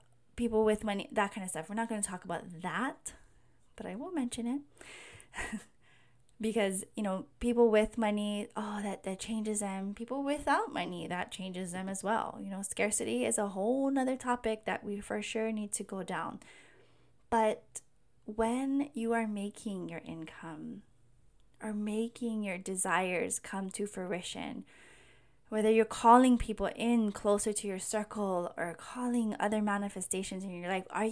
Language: English